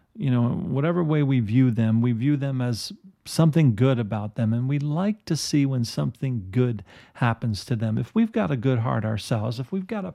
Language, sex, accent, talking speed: English, male, American, 220 wpm